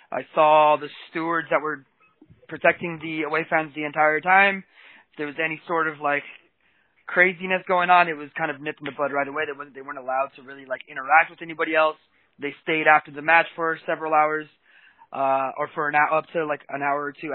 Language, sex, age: English, male, 20-39